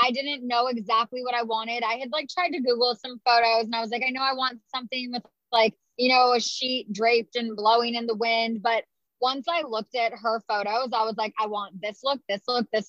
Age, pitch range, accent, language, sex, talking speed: 20-39, 220-255 Hz, American, English, female, 245 wpm